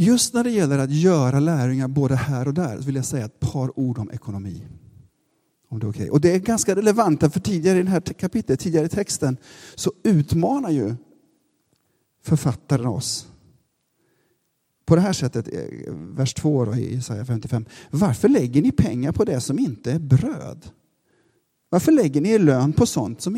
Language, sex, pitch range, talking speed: Swedish, male, 140-195 Hz, 175 wpm